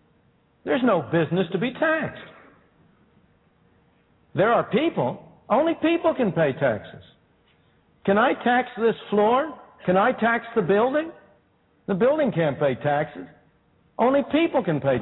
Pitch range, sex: 180-250 Hz, male